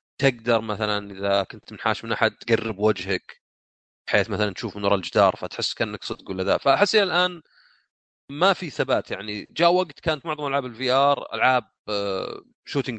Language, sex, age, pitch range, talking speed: Arabic, male, 30-49, 105-145 Hz, 150 wpm